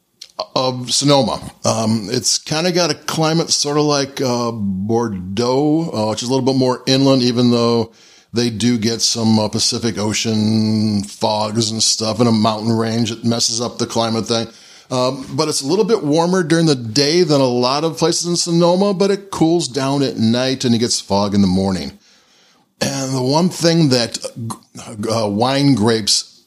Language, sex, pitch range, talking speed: English, male, 110-140 Hz, 185 wpm